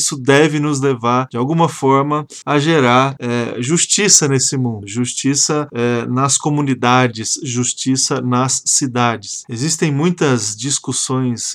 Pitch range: 125-140 Hz